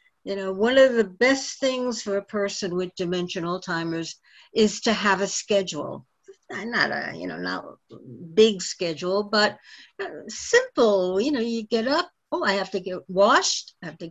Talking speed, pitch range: 180 wpm, 175-255 Hz